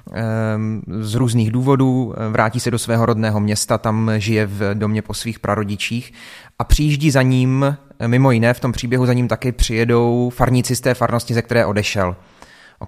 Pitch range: 110-125 Hz